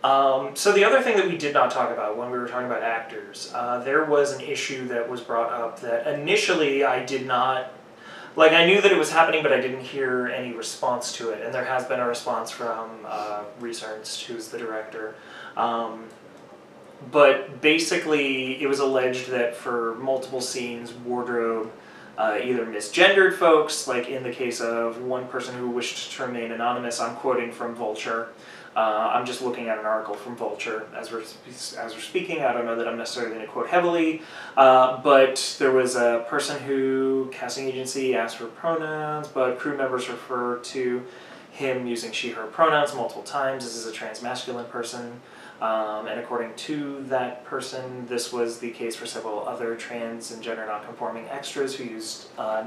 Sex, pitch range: male, 115-135 Hz